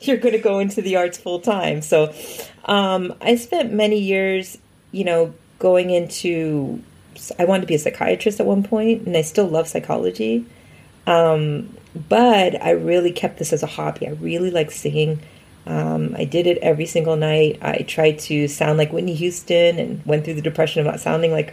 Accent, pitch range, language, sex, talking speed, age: American, 155-180 Hz, English, female, 190 wpm, 30-49